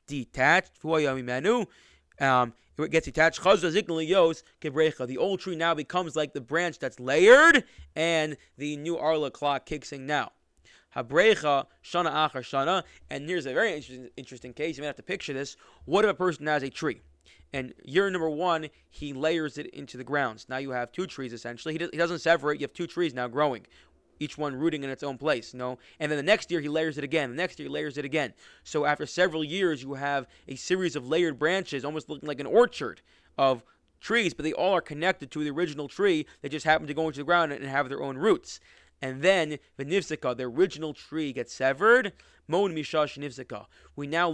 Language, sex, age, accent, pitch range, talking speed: English, male, 20-39, American, 135-165 Hz, 200 wpm